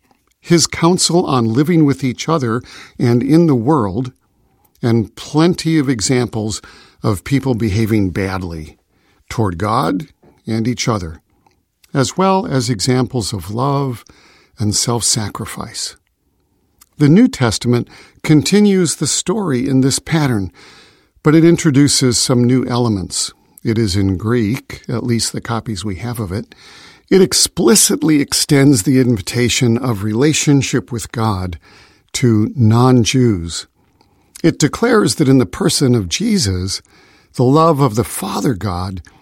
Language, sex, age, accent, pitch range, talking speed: English, male, 50-69, American, 115-155 Hz, 130 wpm